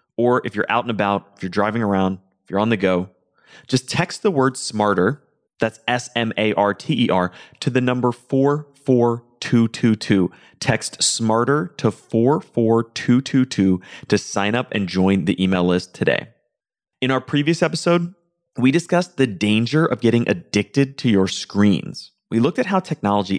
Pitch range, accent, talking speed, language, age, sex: 100-135 Hz, American, 150 wpm, English, 30-49, male